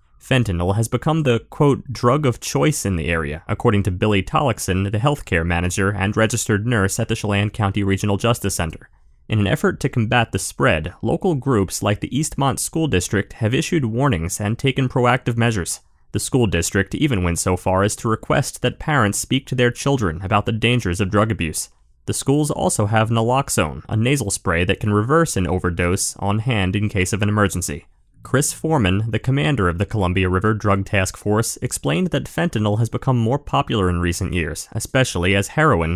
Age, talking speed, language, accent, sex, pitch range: 30-49, 190 wpm, English, American, male, 95-120 Hz